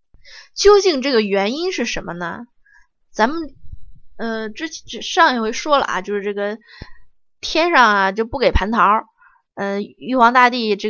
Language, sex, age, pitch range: Chinese, female, 20-39, 210-275 Hz